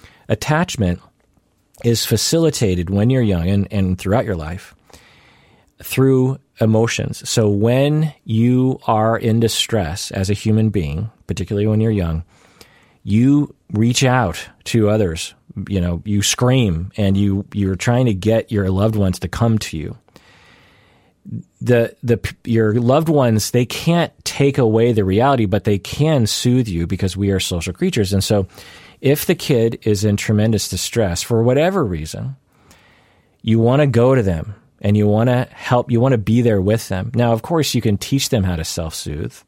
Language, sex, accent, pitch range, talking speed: English, male, American, 100-130 Hz, 165 wpm